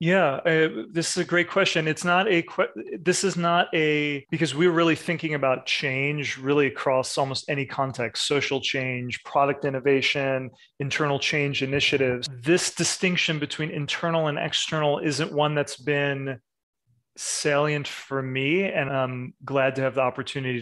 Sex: male